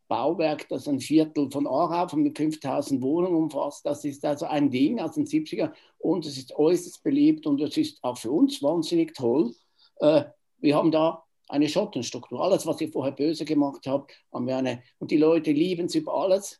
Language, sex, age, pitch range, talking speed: German, male, 60-79, 130-175 Hz, 195 wpm